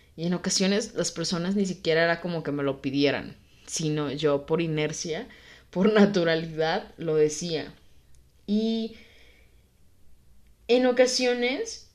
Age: 20-39